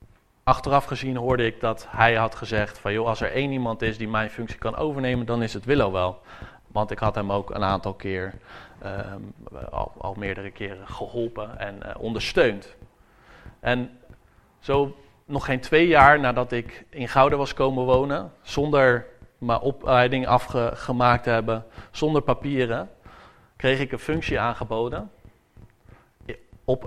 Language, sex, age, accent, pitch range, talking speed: English, male, 40-59, Dutch, 105-125 Hz, 150 wpm